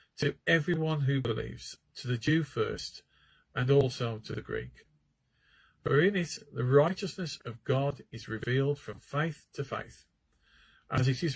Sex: male